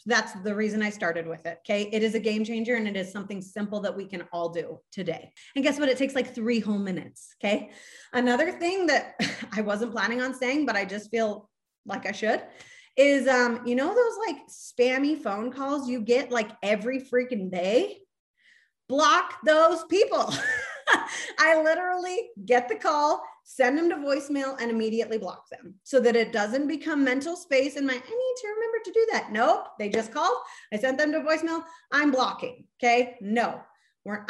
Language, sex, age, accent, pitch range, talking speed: English, female, 30-49, American, 225-315 Hz, 190 wpm